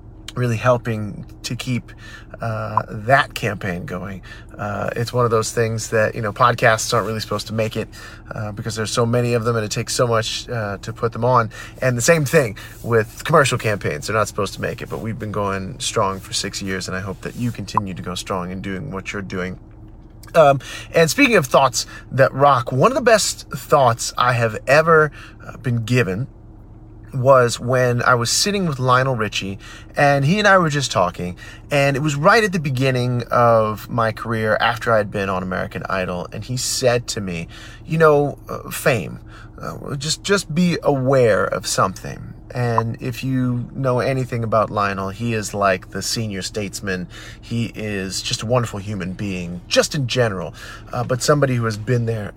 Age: 30-49